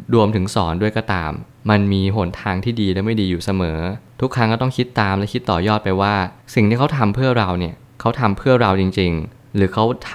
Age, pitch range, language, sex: 20-39, 95-115 Hz, Thai, male